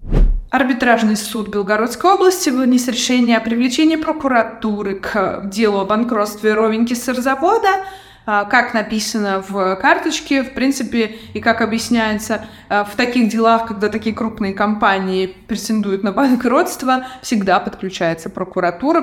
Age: 20-39